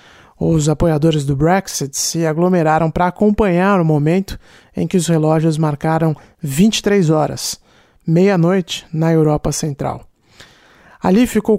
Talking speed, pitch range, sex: 120 wpm, 160-205 Hz, male